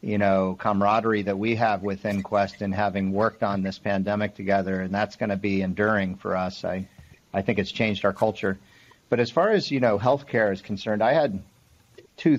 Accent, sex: American, male